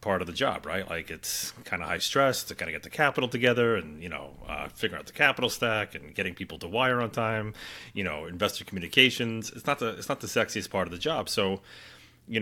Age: 30-49